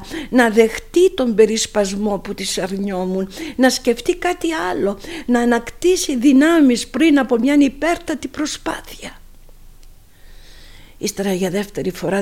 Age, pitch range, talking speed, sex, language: 50-69, 200-270 Hz, 115 wpm, female, Greek